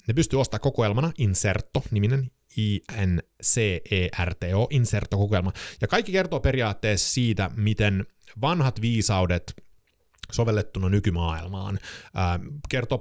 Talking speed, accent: 90 wpm, native